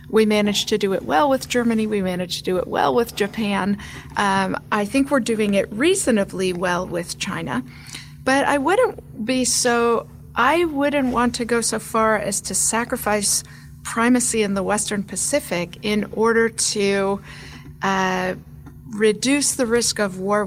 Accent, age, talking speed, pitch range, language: American, 50-69, 160 wpm, 200-240 Hz, English